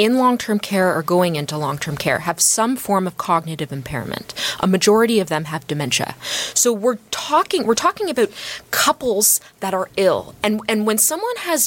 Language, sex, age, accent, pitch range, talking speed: English, female, 20-39, American, 185-245 Hz, 175 wpm